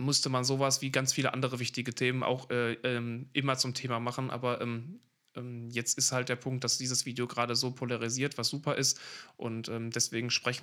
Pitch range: 130-150 Hz